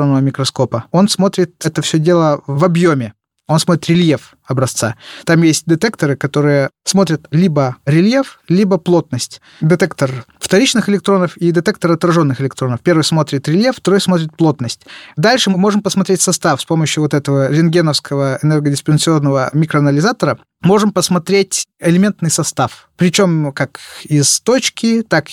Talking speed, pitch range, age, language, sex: 130 wpm, 145-185 Hz, 20-39, Russian, male